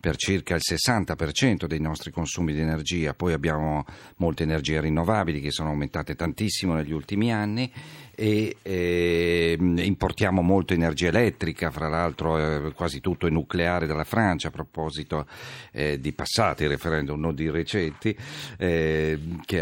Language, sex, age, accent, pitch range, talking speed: Italian, male, 50-69, native, 80-100 Hz, 140 wpm